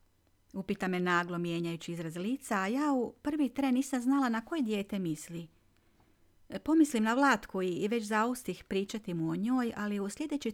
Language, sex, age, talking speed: Croatian, female, 40-59, 170 wpm